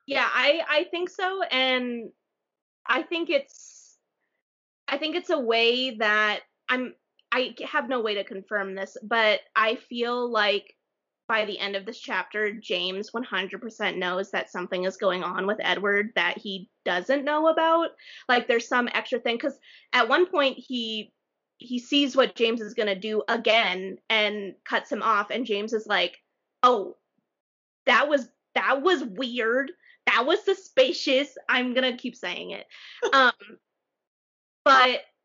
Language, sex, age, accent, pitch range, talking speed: English, female, 20-39, American, 215-285 Hz, 155 wpm